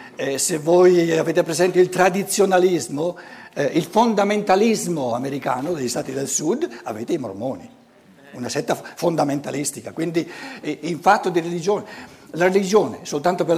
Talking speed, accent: 135 wpm, native